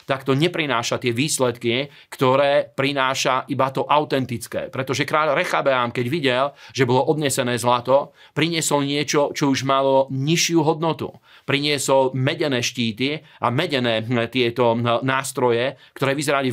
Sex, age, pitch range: male, 40-59, 120-140 Hz